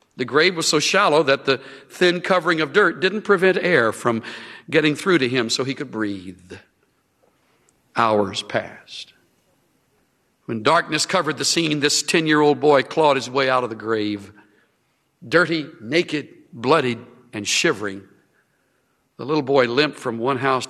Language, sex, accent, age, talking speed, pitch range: English, male, American, 60-79, 150 wpm, 110-150 Hz